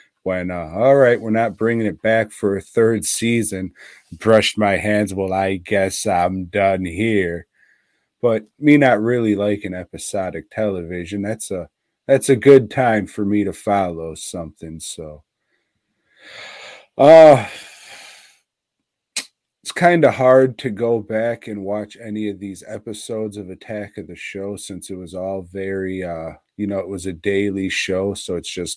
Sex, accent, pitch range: male, American, 95-110 Hz